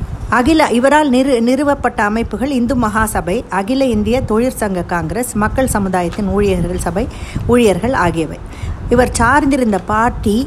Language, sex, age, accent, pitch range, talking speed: Tamil, female, 50-69, native, 180-240 Hz, 115 wpm